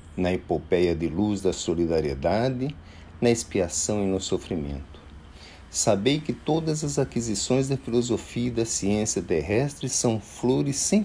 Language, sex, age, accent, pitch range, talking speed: Portuguese, male, 50-69, Brazilian, 80-115 Hz, 135 wpm